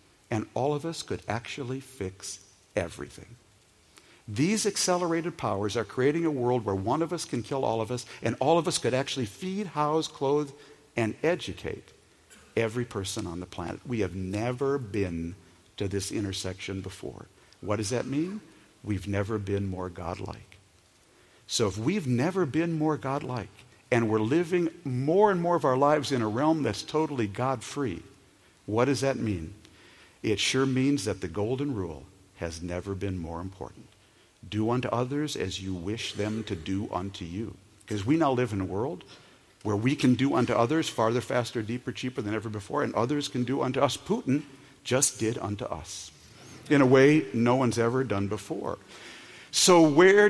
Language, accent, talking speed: English, American, 175 wpm